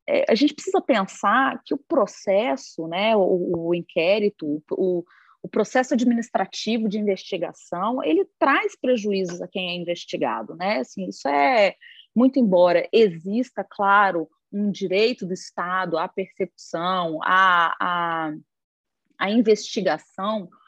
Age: 30-49